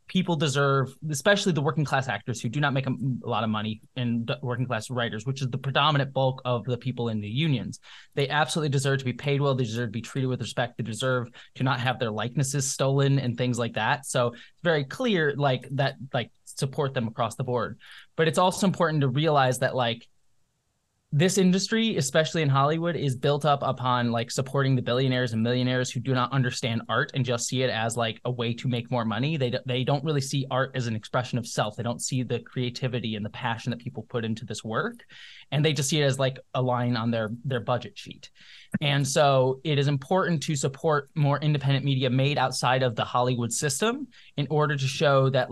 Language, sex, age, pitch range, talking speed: English, male, 20-39, 120-145 Hz, 225 wpm